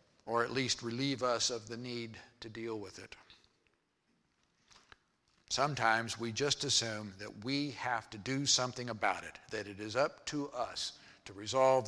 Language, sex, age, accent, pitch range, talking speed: English, male, 50-69, American, 110-135 Hz, 160 wpm